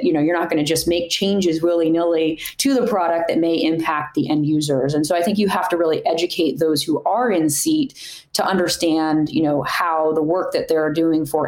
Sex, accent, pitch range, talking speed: female, American, 155-180 Hz, 225 wpm